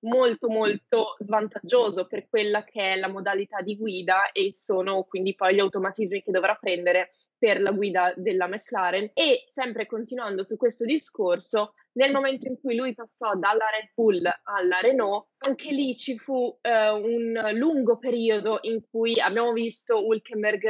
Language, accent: Italian, native